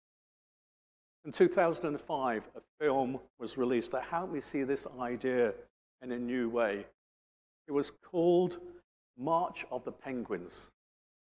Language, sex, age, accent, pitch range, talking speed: English, male, 50-69, British, 120-160 Hz, 125 wpm